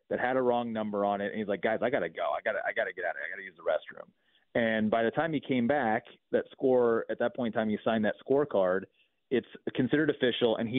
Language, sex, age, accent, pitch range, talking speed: English, male, 30-49, American, 105-130 Hz, 295 wpm